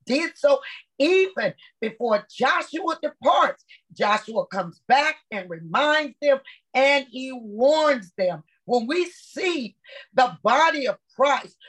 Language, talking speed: English, 120 wpm